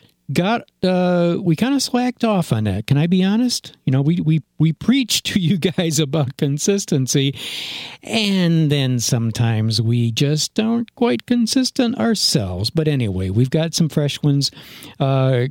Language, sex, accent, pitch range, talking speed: English, male, American, 125-185 Hz, 165 wpm